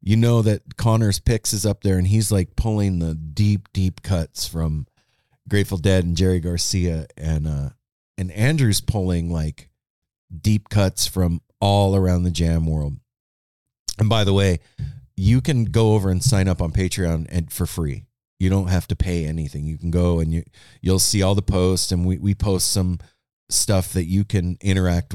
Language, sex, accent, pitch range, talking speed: English, male, American, 80-105 Hz, 185 wpm